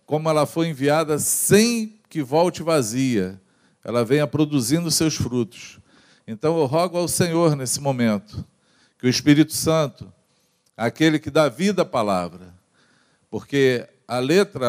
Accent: Brazilian